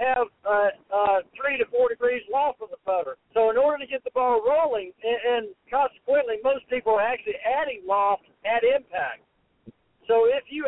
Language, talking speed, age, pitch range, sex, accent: English, 185 wpm, 60-79, 225-290 Hz, male, American